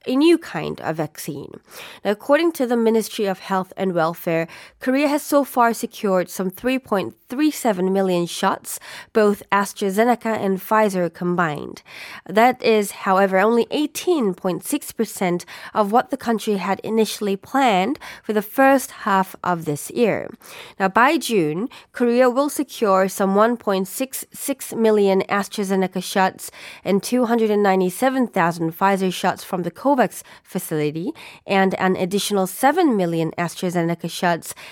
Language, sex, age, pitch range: Korean, female, 20-39, 180-230 Hz